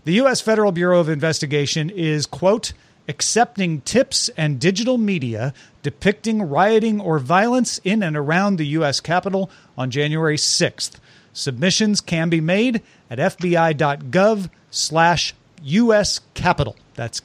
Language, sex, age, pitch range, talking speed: English, male, 40-59, 140-185 Hz, 125 wpm